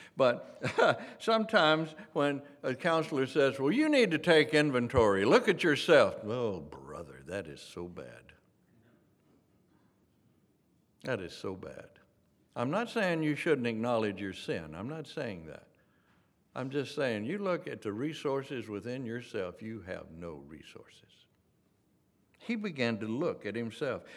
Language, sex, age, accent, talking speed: English, male, 60-79, American, 145 wpm